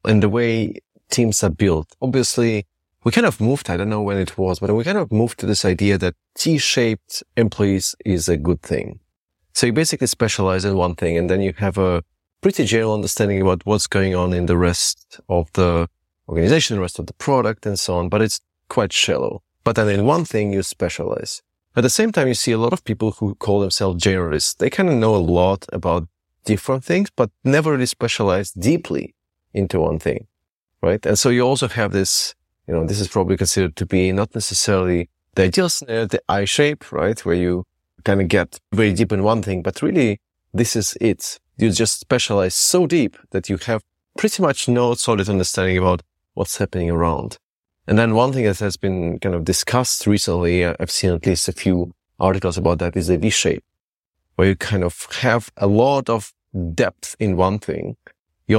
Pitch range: 90-115 Hz